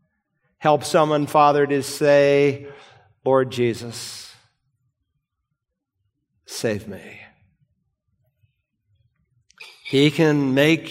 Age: 50-69